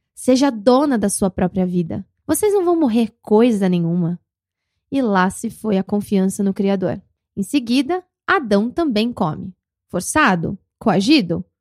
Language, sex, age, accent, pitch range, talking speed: Portuguese, female, 20-39, Brazilian, 195-260 Hz, 140 wpm